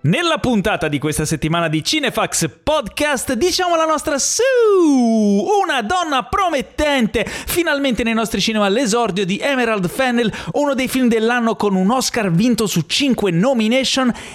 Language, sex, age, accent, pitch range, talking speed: Italian, male, 30-49, native, 175-265 Hz, 140 wpm